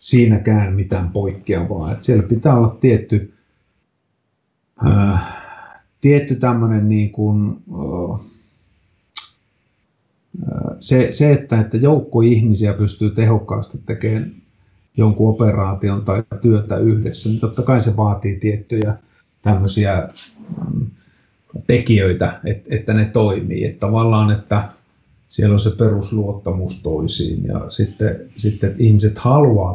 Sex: male